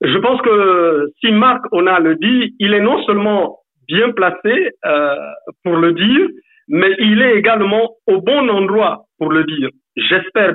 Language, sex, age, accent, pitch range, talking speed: French, male, 60-79, French, 160-245 Hz, 170 wpm